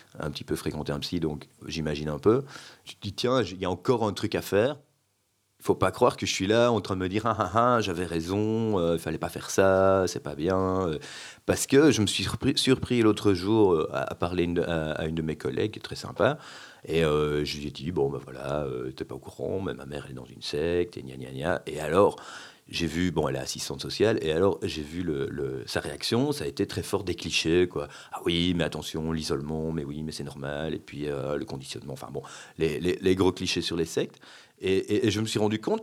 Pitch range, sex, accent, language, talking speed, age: 80-110 Hz, male, French, French, 260 wpm, 40-59